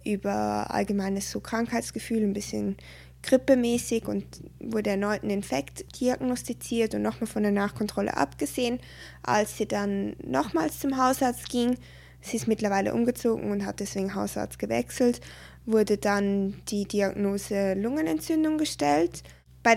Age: 20-39